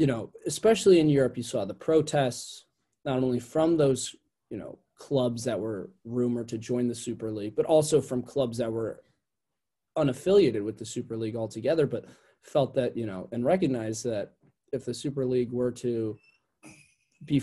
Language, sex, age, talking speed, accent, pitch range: English, male, 20-39, 175 wpm, American, 120-150 Hz